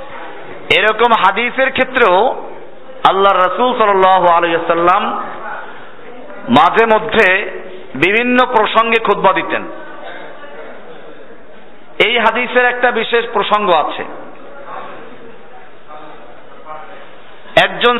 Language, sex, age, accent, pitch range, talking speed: Bengali, male, 50-69, native, 205-245 Hz, 65 wpm